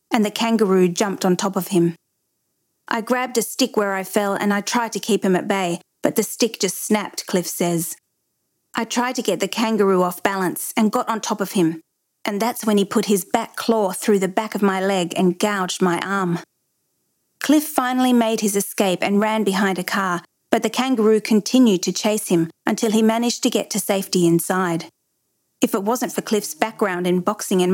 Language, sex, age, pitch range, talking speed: English, female, 40-59, 185-225 Hz, 210 wpm